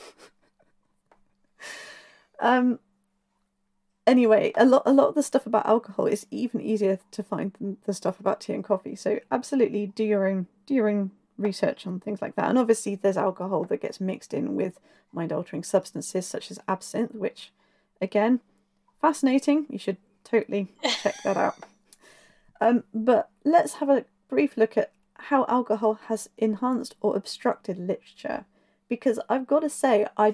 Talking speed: 160 wpm